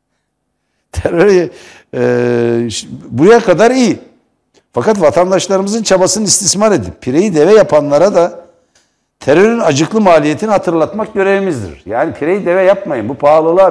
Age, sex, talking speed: 60-79, male, 115 wpm